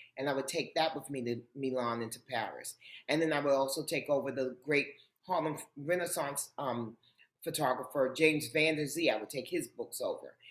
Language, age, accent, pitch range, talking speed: English, 30-49, American, 135-175 Hz, 200 wpm